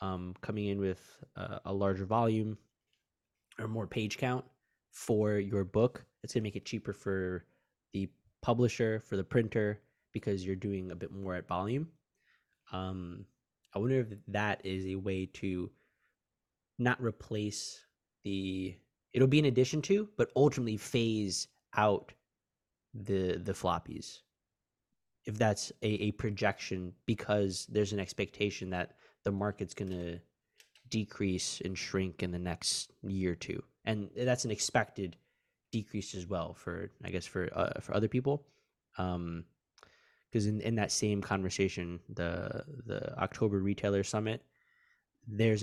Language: English